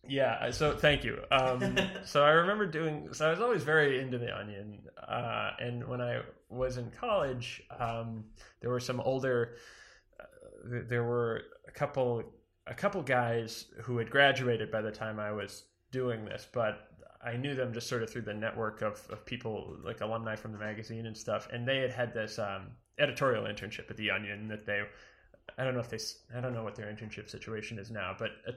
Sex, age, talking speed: male, 20-39, 200 wpm